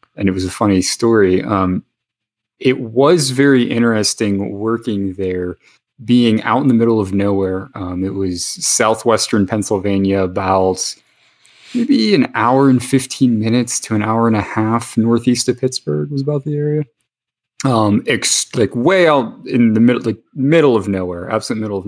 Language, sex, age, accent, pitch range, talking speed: English, male, 30-49, American, 95-125 Hz, 165 wpm